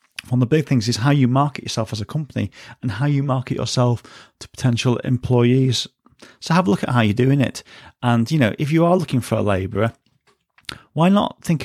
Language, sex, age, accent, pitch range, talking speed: English, male, 40-59, British, 115-135 Hz, 220 wpm